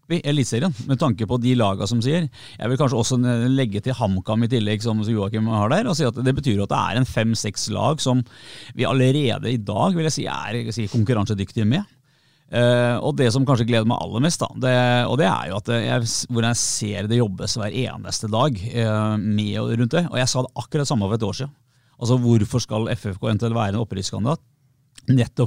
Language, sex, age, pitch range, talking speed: English, male, 30-49, 110-135 Hz, 220 wpm